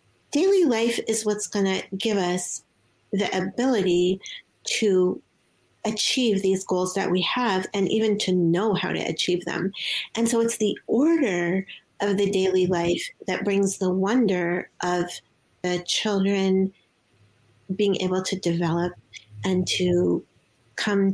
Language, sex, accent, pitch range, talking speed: English, female, American, 185-230 Hz, 135 wpm